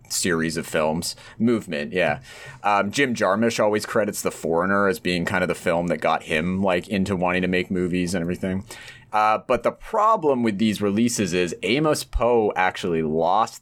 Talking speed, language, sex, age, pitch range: 180 wpm, English, male, 30-49, 85-110 Hz